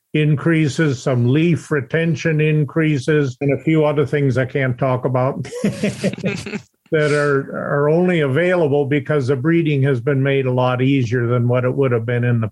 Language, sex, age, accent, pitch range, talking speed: English, male, 50-69, American, 135-155 Hz, 175 wpm